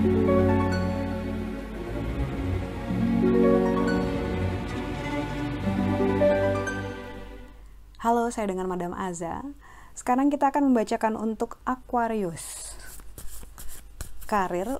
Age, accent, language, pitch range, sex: 20-39, native, Indonesian, 170-240 Hz, female